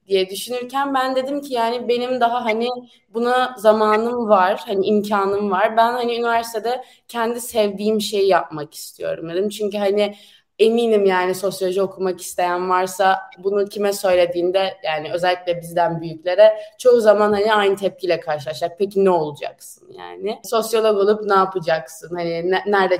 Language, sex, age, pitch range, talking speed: Turkish, female, 20-39, 190-240 Hz, 145 wpm